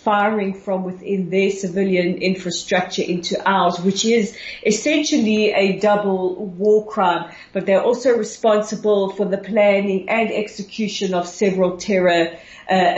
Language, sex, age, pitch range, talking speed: English, female, 40-59, 180-205 Hz, 130 wpm